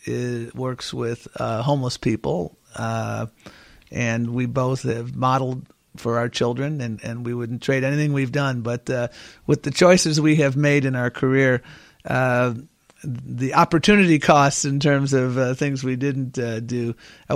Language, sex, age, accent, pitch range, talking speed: English, male, 50-69, American, 120-145 Hz, 165 wpm